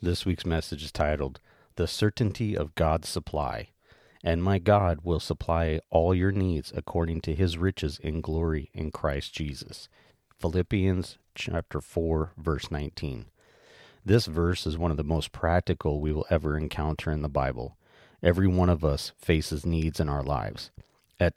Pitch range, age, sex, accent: 80-95 Hz, 40-59, male, American